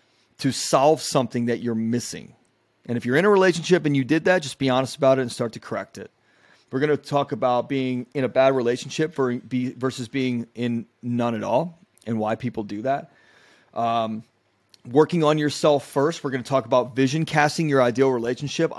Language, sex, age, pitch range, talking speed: English, male, 30-49, 125-155 Hz, 200 wpm